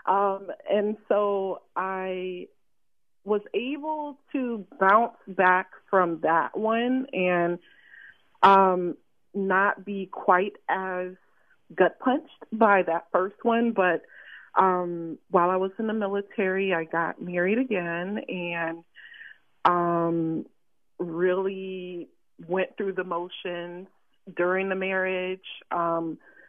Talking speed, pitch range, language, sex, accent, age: 105 wpm, 175-220 Hz, English, female, American, 30-49